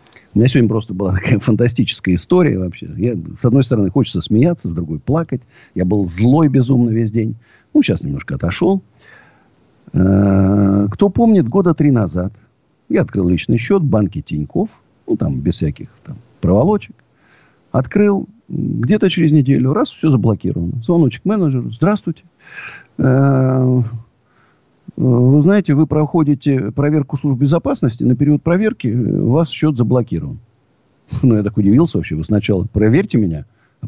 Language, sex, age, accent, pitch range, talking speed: Russian, male, 50-69, native, 110-160 Hz, 150 wpm